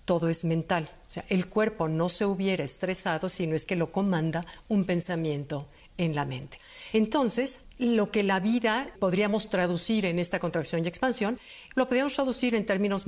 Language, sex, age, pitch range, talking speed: Spanish, female, 50-69, 165-210 Hz, 180 wpm